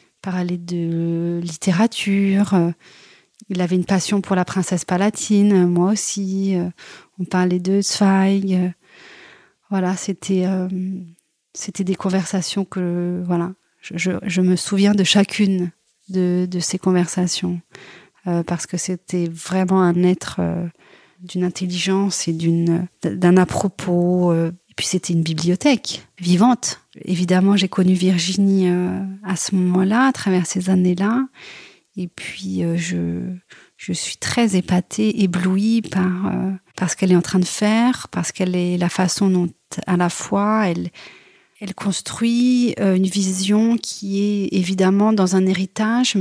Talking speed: 140 wpm